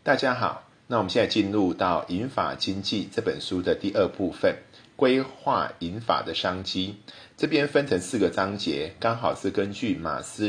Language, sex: Chinese, male